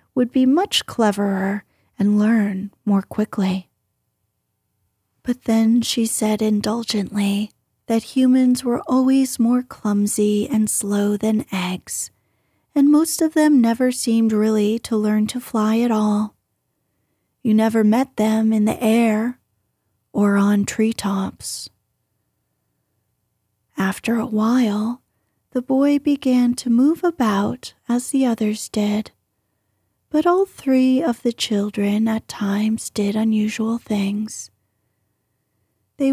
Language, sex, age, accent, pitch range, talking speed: English, female, 30-49, American, 210-250 Hz, 120 wpm